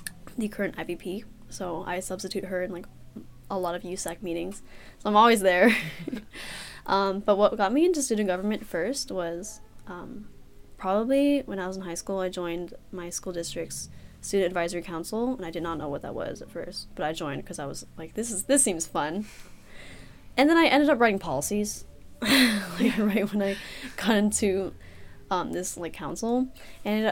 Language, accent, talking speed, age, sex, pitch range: English, American, 185 wpm, 10-29, female, 165-200 Hz